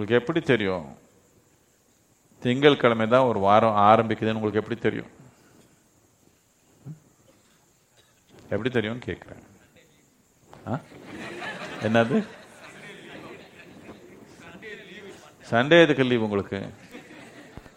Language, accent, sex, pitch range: Tamil, native, male, 115-150 Hz